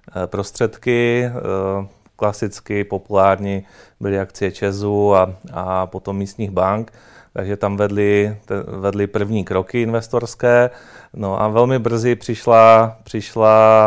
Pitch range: 105-115 Hz